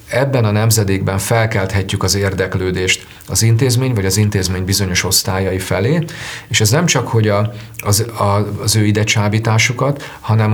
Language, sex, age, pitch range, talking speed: Hungarian, male, 40-59, 100-115 Hz, 135 wpm